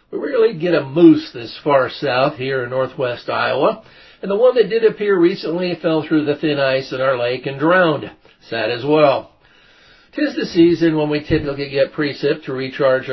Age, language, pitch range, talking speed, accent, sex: 60-79, English, 130-170 Hz, 190 wpm, American, male